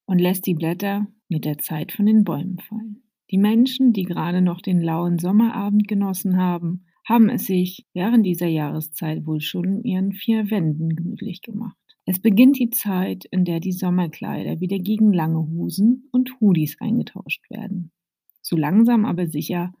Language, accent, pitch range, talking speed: German, German, 175-220 Hz, 165 wpm